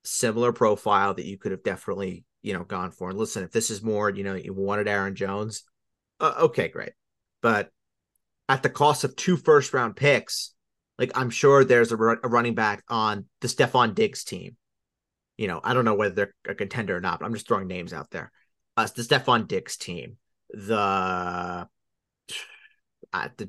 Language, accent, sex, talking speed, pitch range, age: English, American, male, 190 wpm, 110-145 Hz, 30-49